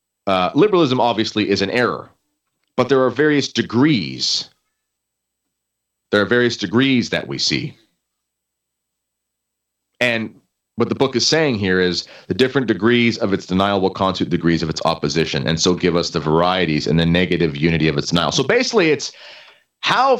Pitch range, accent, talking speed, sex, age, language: 75-120 Hz, American, 160 wpm, male, 30-49, English